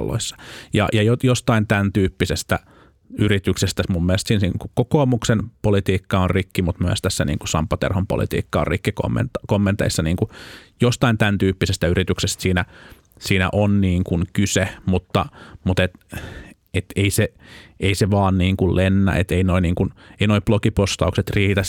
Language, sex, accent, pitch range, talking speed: Finnish, male, native, 95-110 Hz, 150 wpm